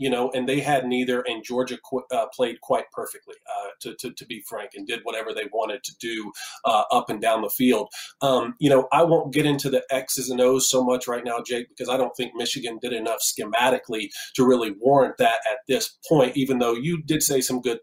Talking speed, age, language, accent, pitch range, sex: 230 wpm, 40-59, English, American, 125-165 Hz, male